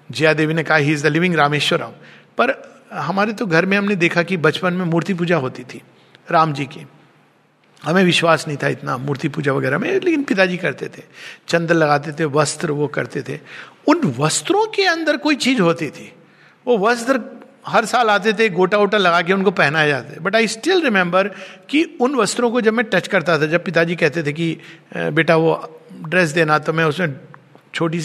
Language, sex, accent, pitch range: Hindi, male, native, 155-230 Hz